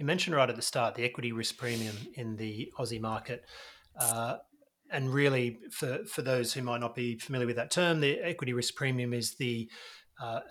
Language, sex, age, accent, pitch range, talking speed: English, male, 30-49, Australian, 120-140 Hz, 200 wpm